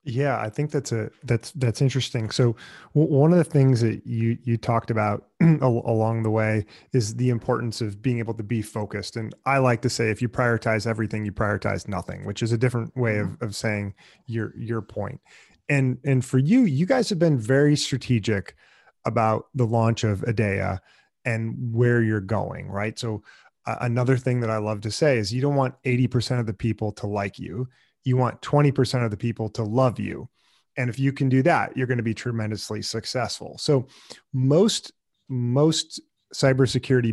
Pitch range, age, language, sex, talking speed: 110-130 Hz, 30-49, English, male, 195 wpm